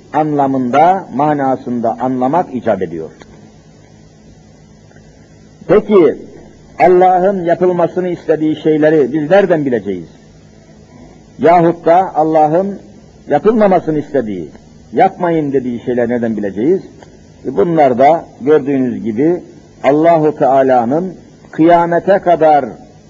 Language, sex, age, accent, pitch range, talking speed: Turkish, male, 60-79, native, 130-175 Hz, 80 wpm